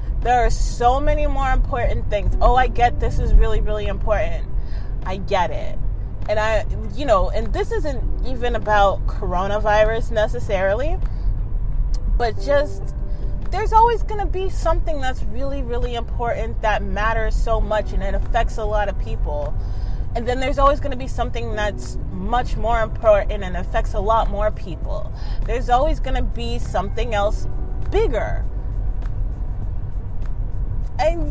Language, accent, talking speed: English, American, 150 wpm